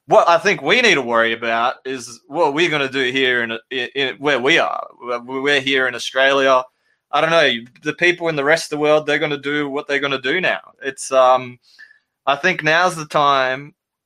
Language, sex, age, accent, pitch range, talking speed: English, male, 20-39, Australian, 130-155 Hz, 215 wpm